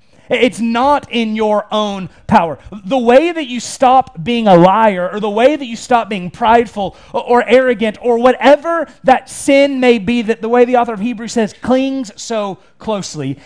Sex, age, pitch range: male, 30-49, 185-245 Hz